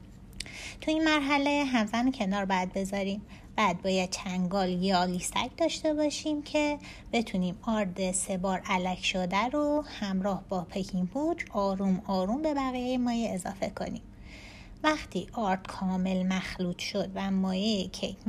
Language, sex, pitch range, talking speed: Persian, female, 185-240 Hz, 130 wpm